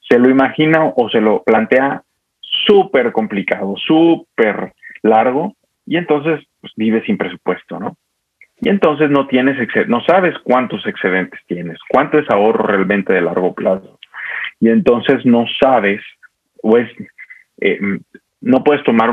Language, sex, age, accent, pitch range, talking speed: Spanish, male, 40-59, Mexican, 105-150 Hz, 145 wpm